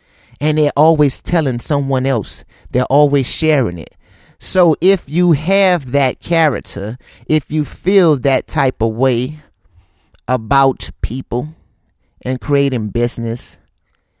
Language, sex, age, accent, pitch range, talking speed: English, male, 30-49, American, 110-140 Hz, 120 wpm